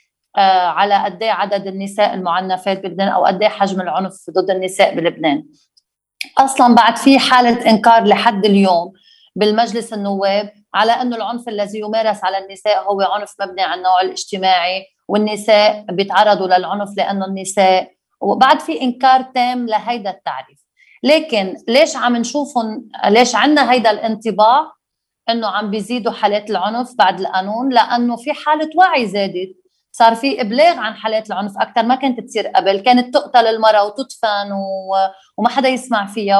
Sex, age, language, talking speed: female, 30-49, Arabic, 145 wpm